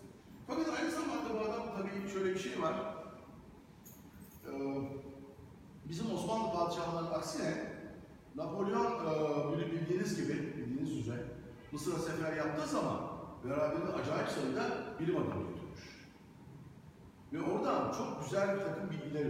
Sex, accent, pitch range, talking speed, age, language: male, native, 140-200 Hz, 110 wpm, 60-79, Turkish